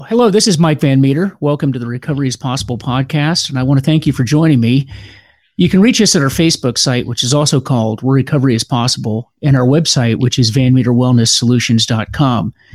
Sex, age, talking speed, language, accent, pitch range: male, 40-59, 205 wpm, English, American, 125-150 Hz